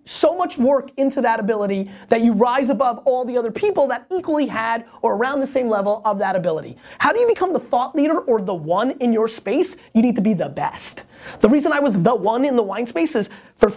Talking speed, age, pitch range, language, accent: 245 wpm, 30-49, 220-270 Hz, English, American